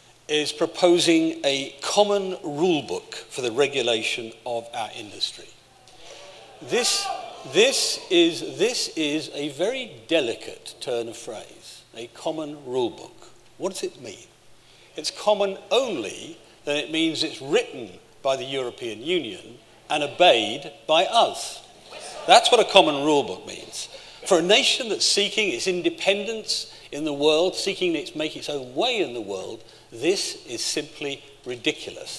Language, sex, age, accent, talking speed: English, male, 50-69, British, 145 wpm